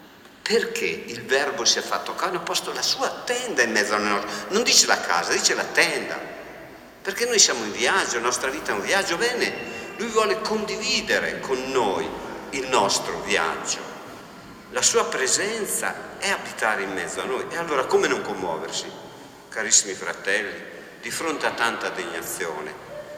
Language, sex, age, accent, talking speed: Italian, male, 50-69, native, 165 wpm